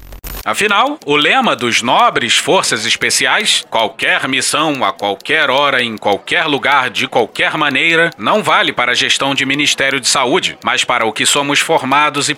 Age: 30-49